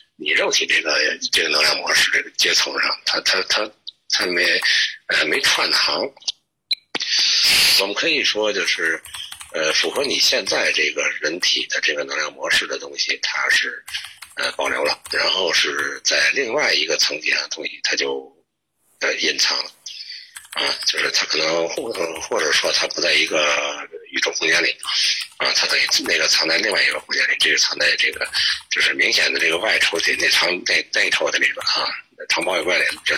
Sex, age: male, 60-79